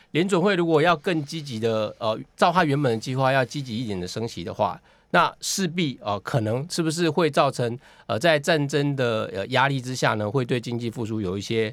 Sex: male